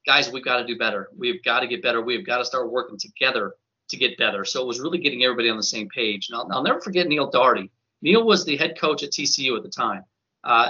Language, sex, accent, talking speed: English, male, American, 270 wpm